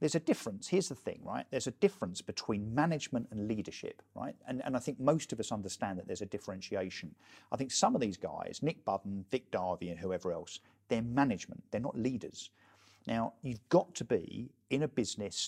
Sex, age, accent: male, 50-69, British